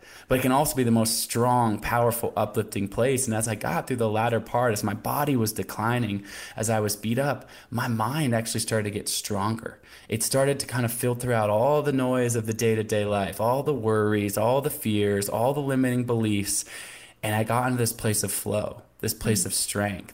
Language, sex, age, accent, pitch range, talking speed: English, male, 20-39, American, 105-120 Hz, 215 wpm